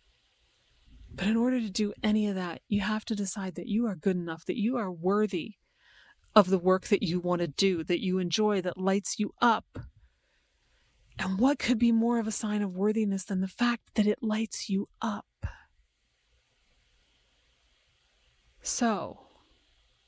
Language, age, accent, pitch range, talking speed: English, 30-49, American, 190-235 Hz, 165 wpm